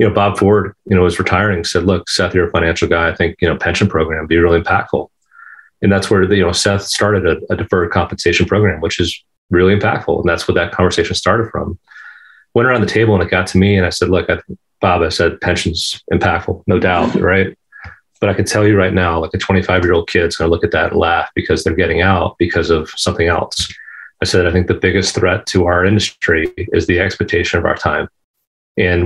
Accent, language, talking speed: American, English, 235 wpm